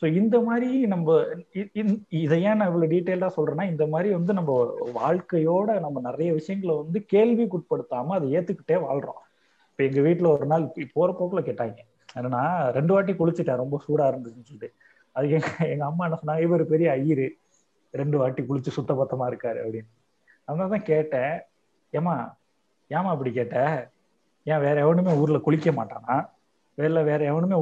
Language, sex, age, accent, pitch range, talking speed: Tamil, male, 30-49, native, 145-180 Hz, 150 wpm